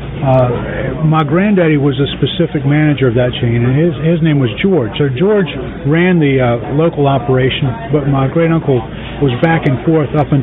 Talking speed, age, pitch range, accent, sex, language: 190 wpm, 40-59, 135-170 Hz, American, male, English